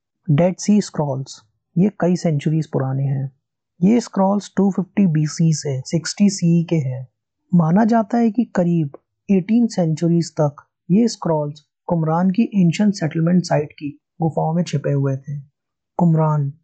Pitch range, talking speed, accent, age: 140-185 Hz, 140 wpm, native, 20-39